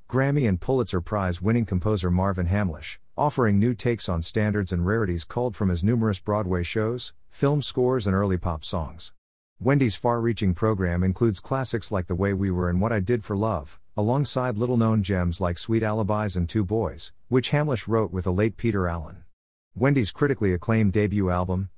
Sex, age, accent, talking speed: male, 50-69, American, 175 wpm